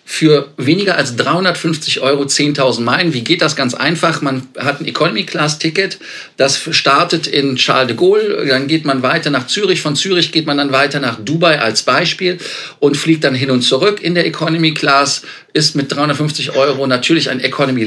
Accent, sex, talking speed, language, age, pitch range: German, male, 190 wpm, German, 40-59, 130-155 Hz